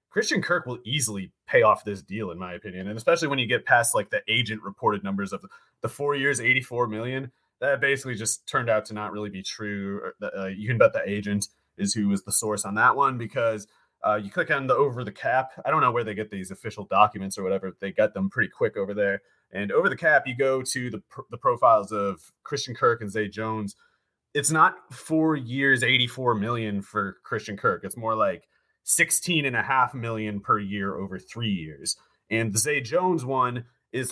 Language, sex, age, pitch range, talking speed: English, male, 30-49, 105-130 Hz, 215 wpm